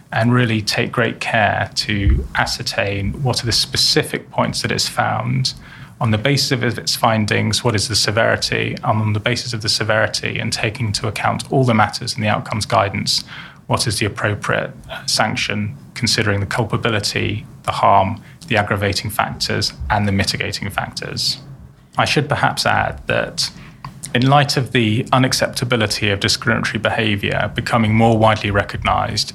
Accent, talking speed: British, 155 wpm